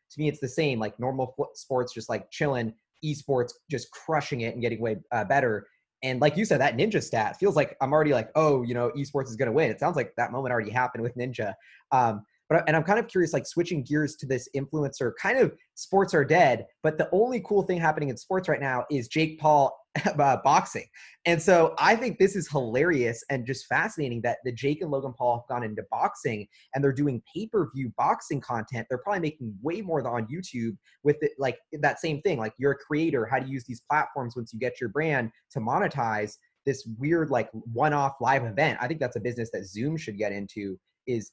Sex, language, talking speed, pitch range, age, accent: male, English, 225 wpm, 120-150 Hz, 20-39, American